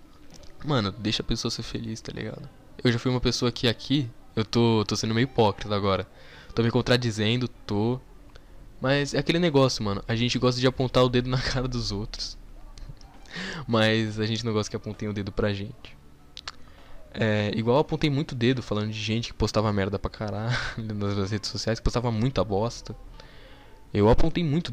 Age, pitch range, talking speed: 10-29, 105-130 Hz, 185 wpm